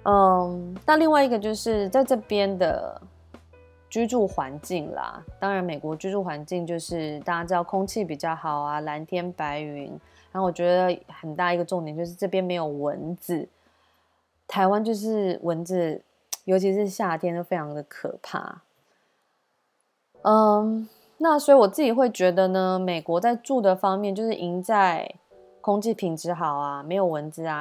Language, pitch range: Chinese, 160-205 Hz